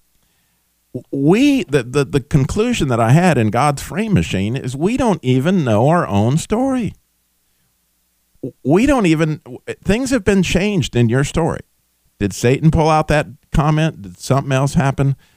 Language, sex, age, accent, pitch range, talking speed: English, male, 50-69, American, 105-155 Hz, 155 wpm